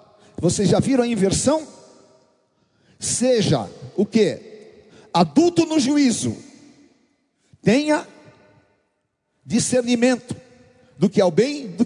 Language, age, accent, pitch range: Portuguese, 50-69, Brazilian, 185-270 Hz